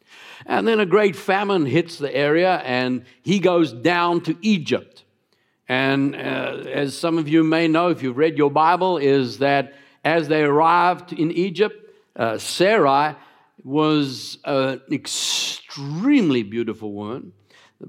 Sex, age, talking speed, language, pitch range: male, 60-79, 140 wpm, English, 130-170 Hz